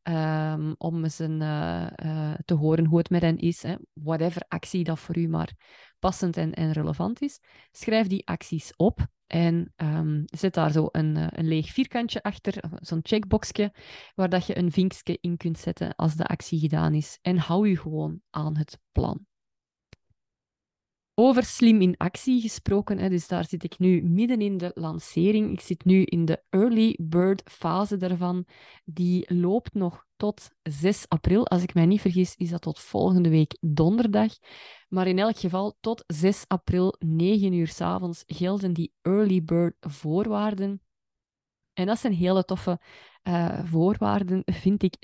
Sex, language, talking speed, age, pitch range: female, Dutch, 170 wpm, 20-39, 165-195 Hz